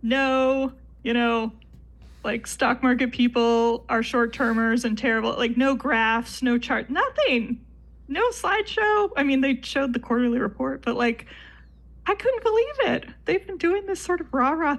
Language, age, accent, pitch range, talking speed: English, 20-39, American, 205-270 Hz, 160 wpm